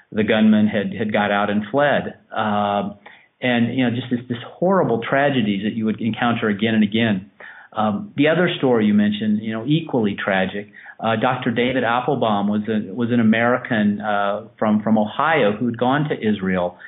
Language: English